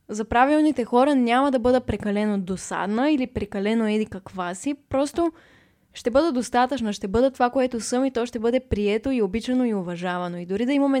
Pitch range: 205-260 Hz